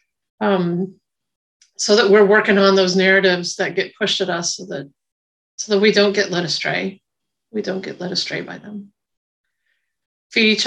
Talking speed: 170 wpm